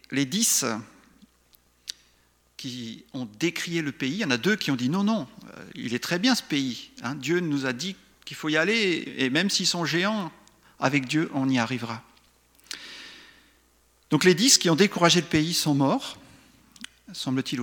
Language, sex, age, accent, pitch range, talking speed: French, male, 50-69, French, 120-160 Hz, 175 wpm